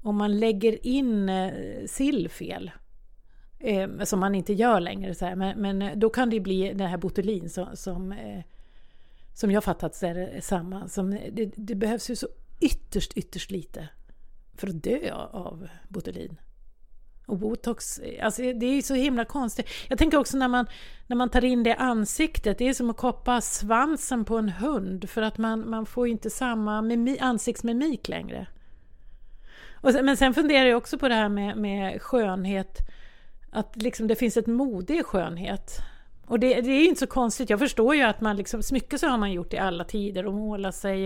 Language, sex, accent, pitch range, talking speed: English, female, Swedish, 195-245 Hz, 195 wpm